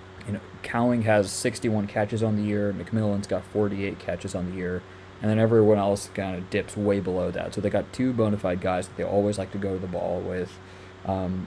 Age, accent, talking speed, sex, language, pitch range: 20-39, American, 220 wpm, male, English, 95-105 Hz